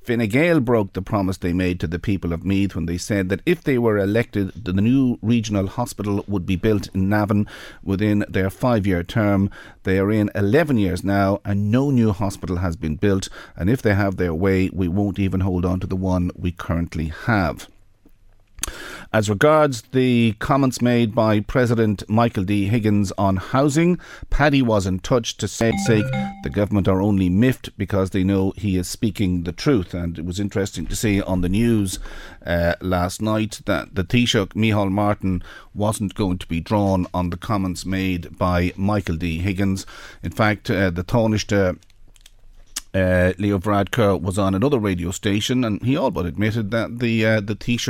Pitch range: 90-110 Hz